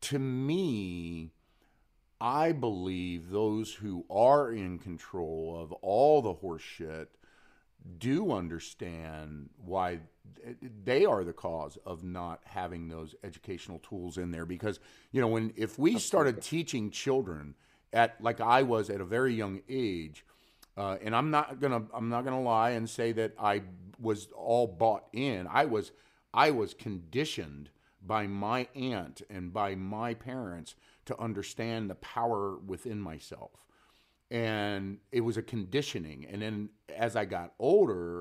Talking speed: 145 wpm